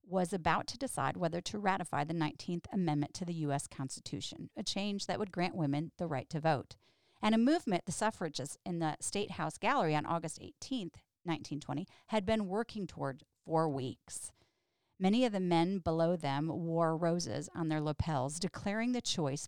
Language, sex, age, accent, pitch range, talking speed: English, female, 40-59, American, 150-195 Hz, 180 wpm